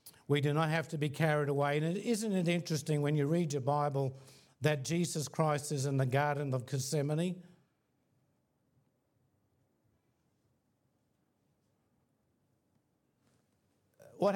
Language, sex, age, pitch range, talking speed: English, male, 60-79, 130-150 Hz, 115 wpm